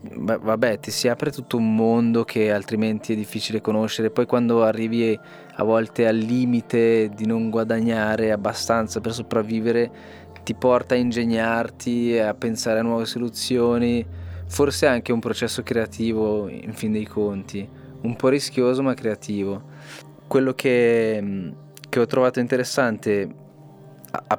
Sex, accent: male, native